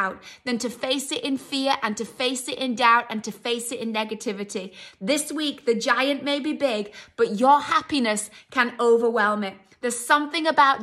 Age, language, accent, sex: 20-39, English, British, female